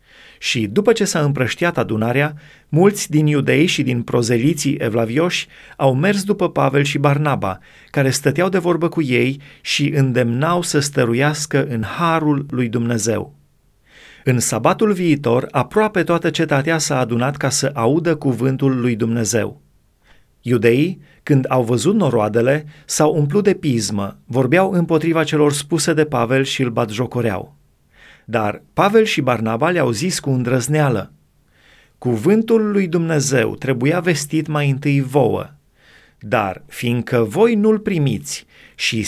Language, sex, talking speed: Romanian, male, 135 wpm